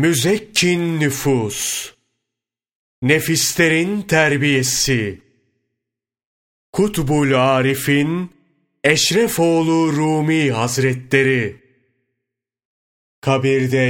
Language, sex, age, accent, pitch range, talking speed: Turkish, male, 30-49, native, 115-140 Hz, 50 wpm